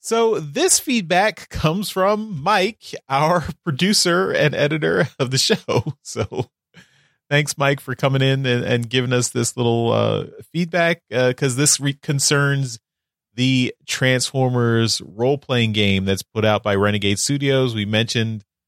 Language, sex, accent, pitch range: English, male, American, 115-160 Hz